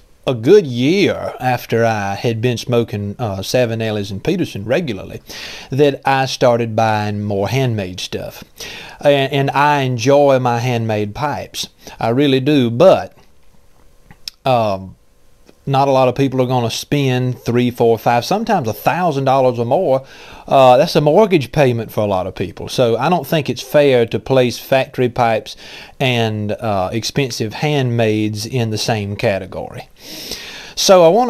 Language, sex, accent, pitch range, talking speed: English, male, American, 110-135 Hz, 155 wpm